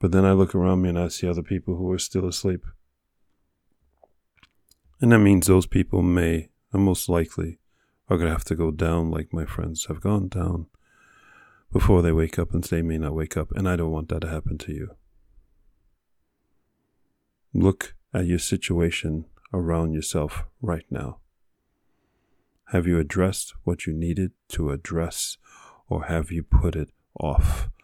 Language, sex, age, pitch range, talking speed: English, male, 40-59, 80-95 Hz, 165 wpm